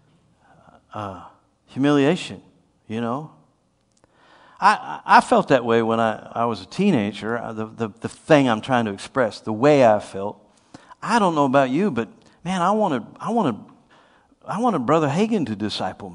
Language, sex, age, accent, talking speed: English, male, 50-69, American, 170 wpm